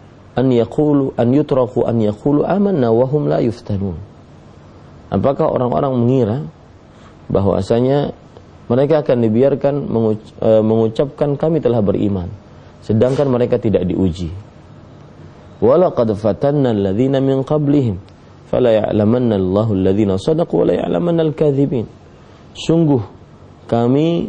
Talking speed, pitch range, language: 100 wpm, 105-140 Hz, English